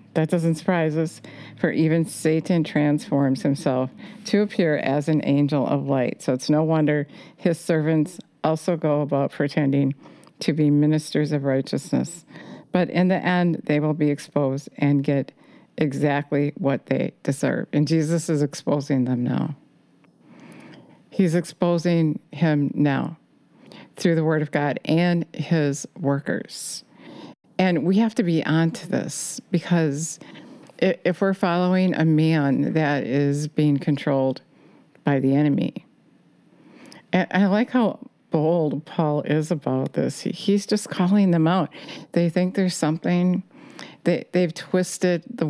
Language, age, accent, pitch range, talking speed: English, 50-69, American, 150-180 Hz, 135 wpm